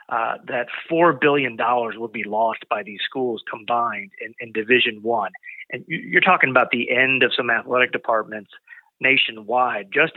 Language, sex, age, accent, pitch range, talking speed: English, male, 30-49, American, 120-145 Hz, 160 wpm